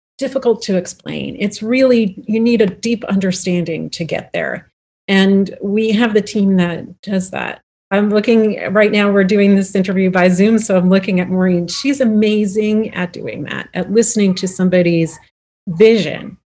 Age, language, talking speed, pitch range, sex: 40-59, English, 165 wpm, 175-205 Hz, female